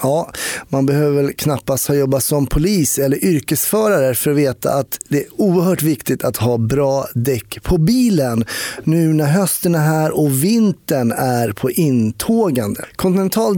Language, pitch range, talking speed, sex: Swedish, 135-180 Hz, 155 wpm, male